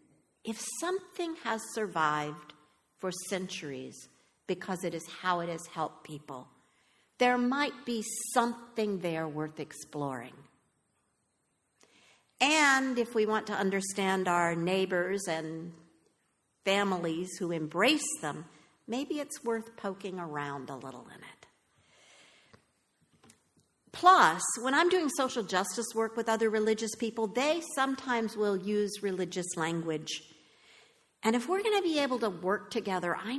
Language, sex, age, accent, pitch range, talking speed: English, female, 50-69, American, 170-240 Hz, 130 wpm